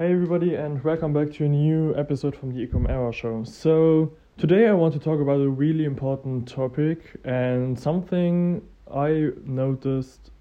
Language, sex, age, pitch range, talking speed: English, male, 20-39, 125-155 Hz, 165 wpm